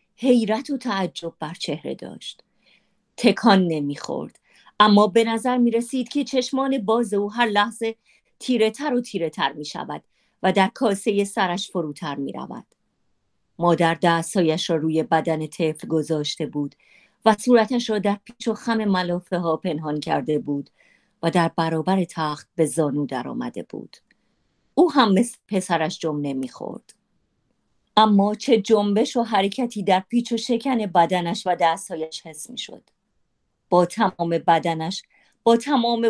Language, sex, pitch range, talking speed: Persian, female, 165-230 Hz, 140 wpm